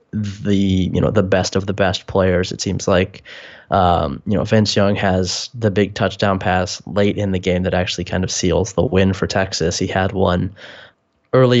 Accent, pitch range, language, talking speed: American, 95-115 Hz, English, 200 wpm